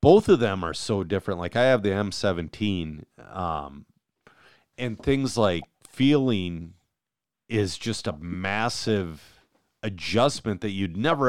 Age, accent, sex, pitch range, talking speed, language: 40-59, American, male, 90-115 Hz, 130 wpm, English